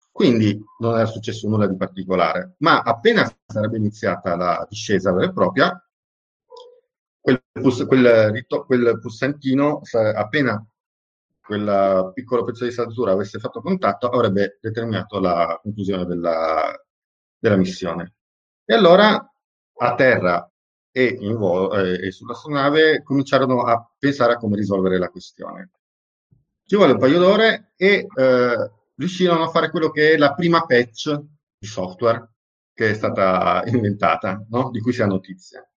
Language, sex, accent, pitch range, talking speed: Italian, male, native, 100-135 Hz, 135 wpm